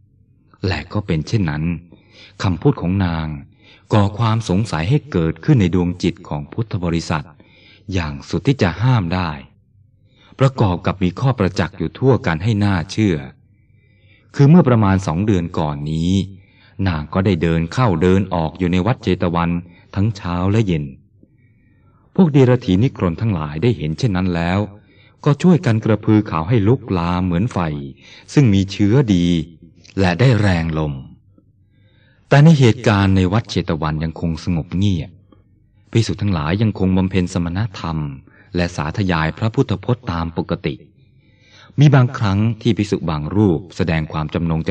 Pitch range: 85-110 Hz